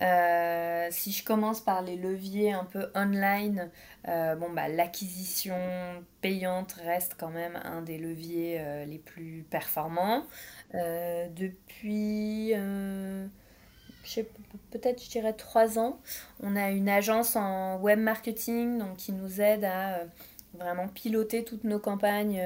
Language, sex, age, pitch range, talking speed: French, female, 20-39, 170-205 Hz, 140 wpm